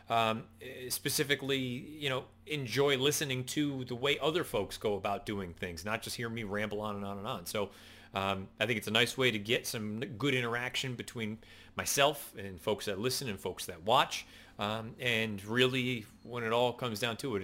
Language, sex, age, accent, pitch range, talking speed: English, male, 30-49, American, 95-125 Hz, 200 wpm